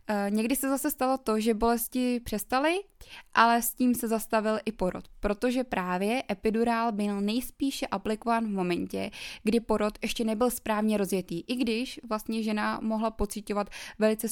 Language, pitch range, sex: Czech, 200-230 Hz, female